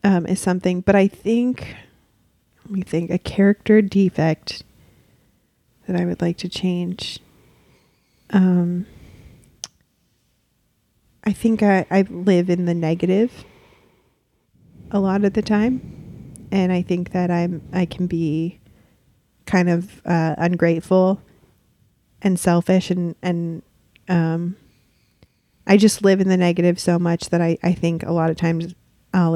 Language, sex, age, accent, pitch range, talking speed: English, female, 30-49, American, 165-190 Hz, 135 wpm